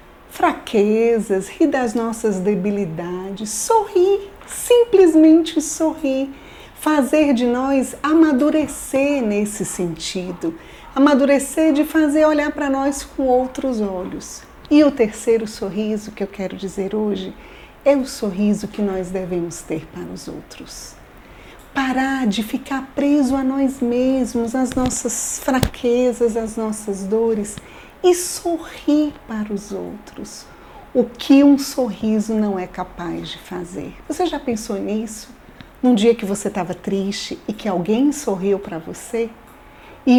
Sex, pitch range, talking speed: female, 200-280 Hz, 130 wpm